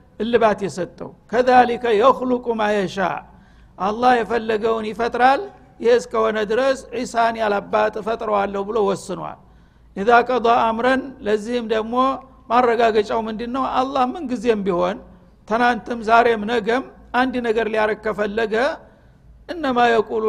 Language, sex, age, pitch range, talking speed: Amharic, male, 60-79, 200-240 Hz, 120 wpm